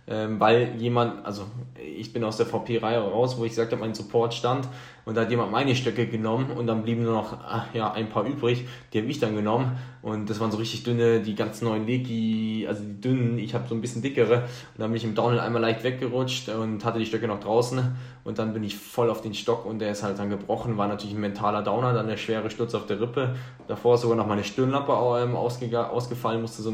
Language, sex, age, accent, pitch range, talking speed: German, male, 10-29, German, 110-125 Hz, 240 wpm